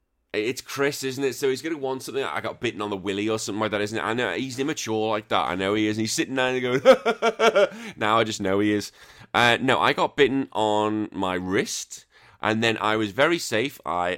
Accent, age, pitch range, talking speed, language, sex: British, 30-49, 95-130 Hz, 260 wpm, English, male